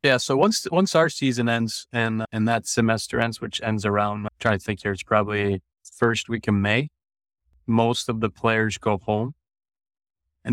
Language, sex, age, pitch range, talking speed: English, male, 30-49, 100-110 Hz, 190 wpm